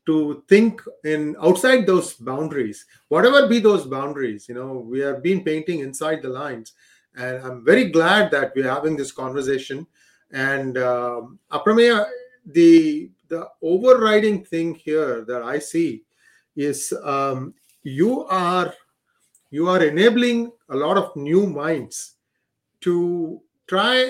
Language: English